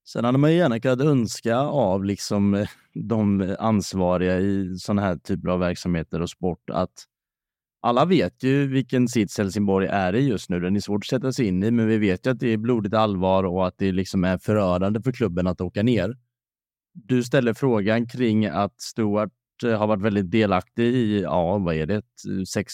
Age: 30-49